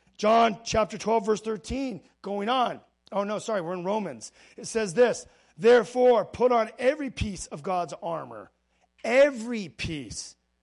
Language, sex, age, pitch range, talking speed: English, male, 40-59, 155-230 Hz, 145 wpm